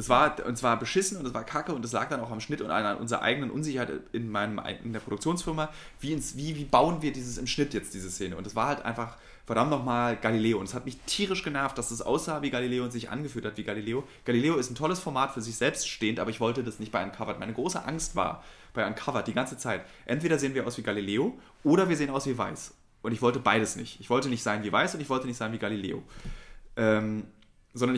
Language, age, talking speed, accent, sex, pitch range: German, 30-49, 250 wpm, German, male, 105-135 Hz